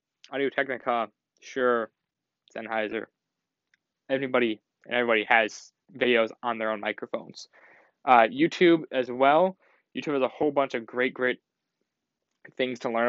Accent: American